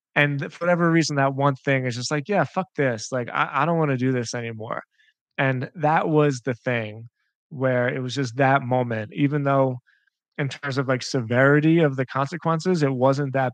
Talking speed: 205 wpm